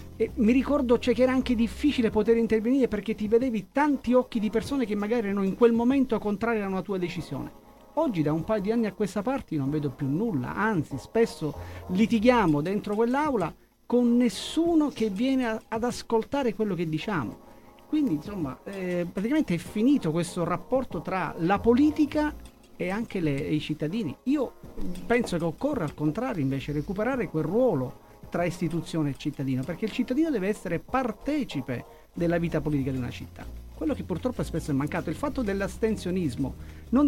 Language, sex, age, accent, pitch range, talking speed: Italian, male, 40-59, native, 155-235 Hz, 175 wpm